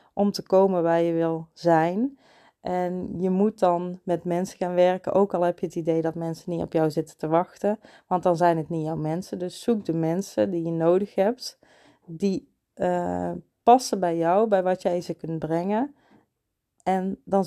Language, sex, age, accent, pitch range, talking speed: Dutch, female, 30-49, Dutch, 165-205 Hz, 195 wpm